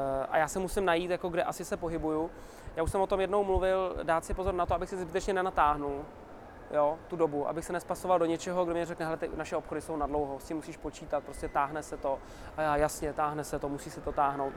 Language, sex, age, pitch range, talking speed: Czech, male, 20-39, 150-185 Hz, 240 wpm